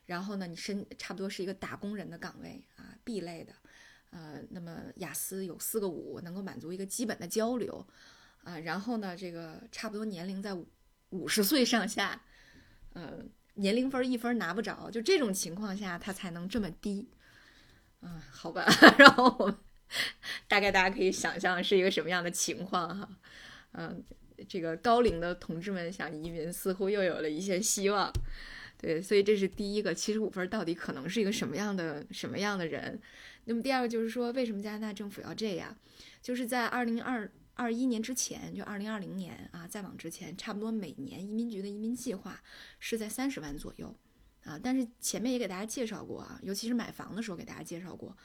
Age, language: 20-39, Chinese